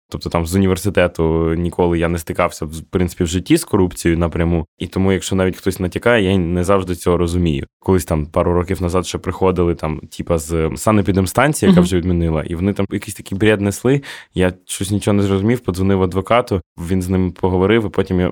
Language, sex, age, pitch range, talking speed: Ukrainian, male, 20-39, 90-105 Hz, 195 wpm